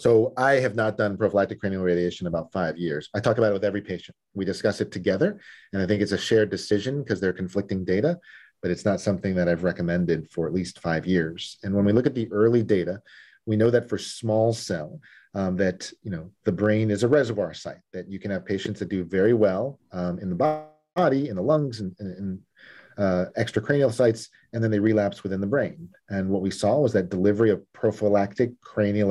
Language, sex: English, male